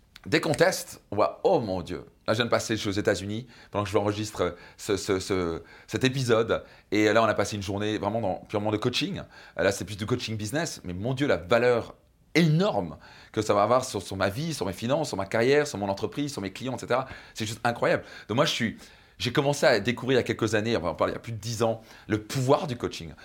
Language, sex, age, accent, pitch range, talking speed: French, male, 30-49, French, 105-125 Hz, 270 wpm